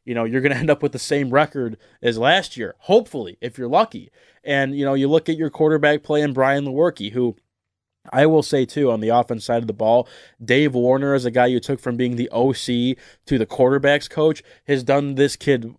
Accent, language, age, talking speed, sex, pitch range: American, English, 20-39, 230 wpm, male, 120-145 Hz